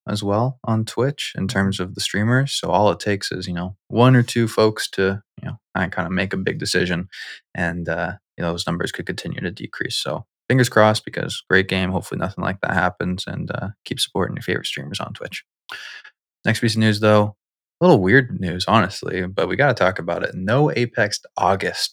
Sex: male